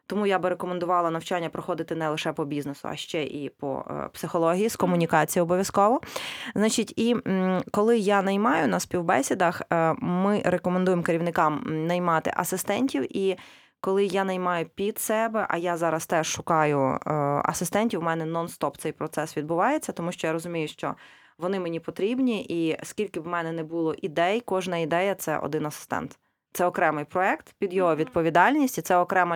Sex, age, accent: female, 20-39, native